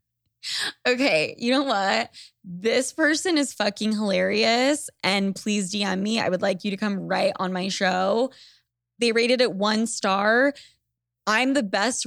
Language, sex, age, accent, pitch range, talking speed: English, female, 20-39, American, 180-235 Hz, 155 wpm